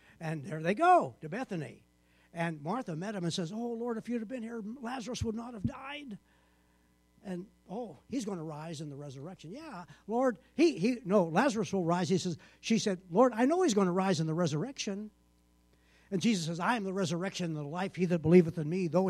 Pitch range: 145-225 Hz